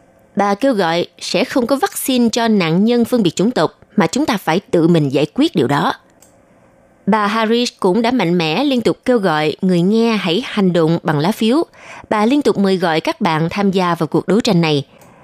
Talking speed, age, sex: 220 wpm, 20-39, female